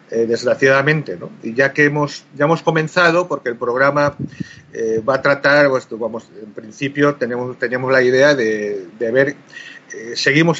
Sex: male